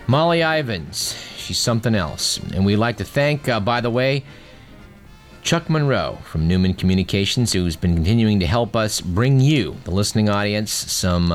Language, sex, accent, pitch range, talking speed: English, male, American, 95-130 Hz, 165 wpm